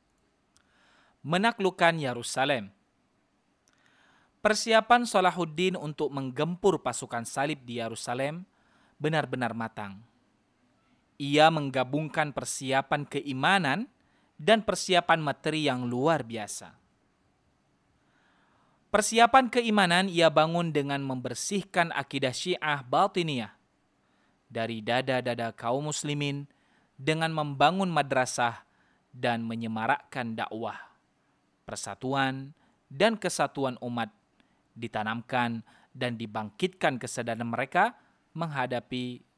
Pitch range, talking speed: 125-175 Hz, 80 wpm